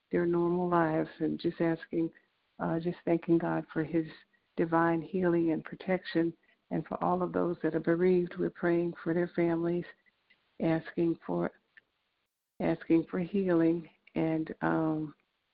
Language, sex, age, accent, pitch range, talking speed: English, female, 60-79, American, 160-175 Hz, 130 wpm